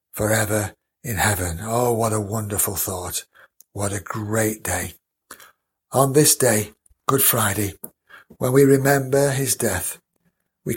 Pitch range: 100-140 Hz